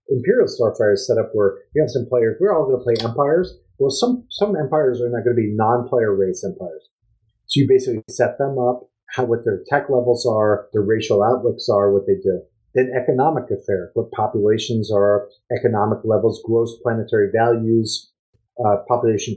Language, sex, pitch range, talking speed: English, male, 110-135 Hz, 185 wpm